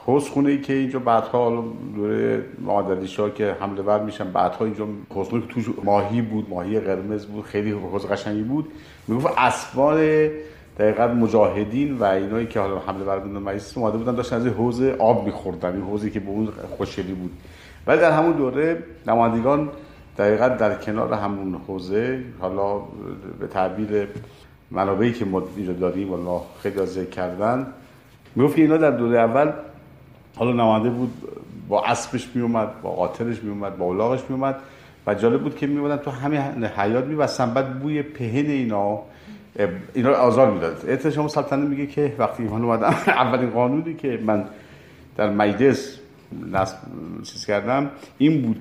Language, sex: Persian, male